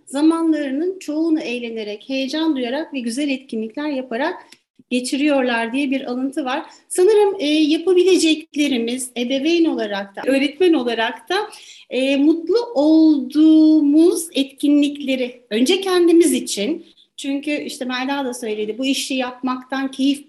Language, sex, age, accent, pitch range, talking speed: Turkish, female, 40-59, native, 260-320 Hz, 110 wpm